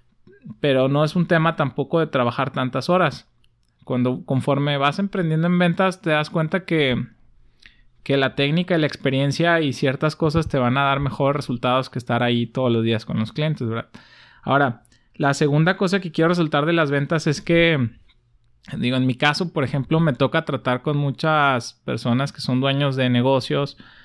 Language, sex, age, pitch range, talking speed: Spanish, male, 20-39, 125-160 Hz, 185 wpm